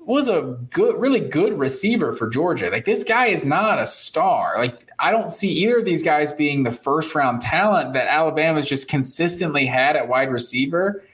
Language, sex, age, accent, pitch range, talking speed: English, male, 20-39, American, 130-175 Hz, 195 wpm